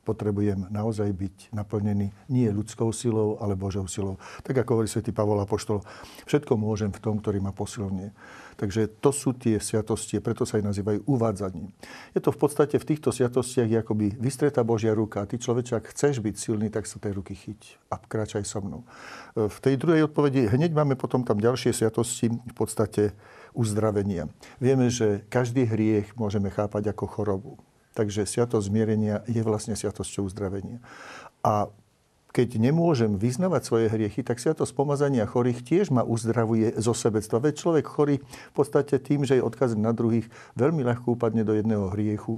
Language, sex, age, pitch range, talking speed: Slovak, male, 60-79, 105-125 Hz, 170 wpm